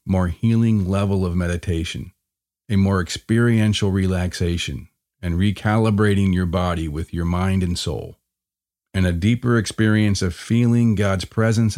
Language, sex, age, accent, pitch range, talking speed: English, male, 40-59, American, 90-105 Hz, 130 wpm